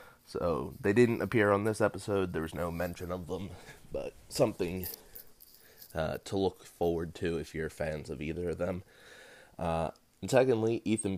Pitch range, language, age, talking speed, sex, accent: 85-100 Hz, English, 20-39, 165 wpm, male, American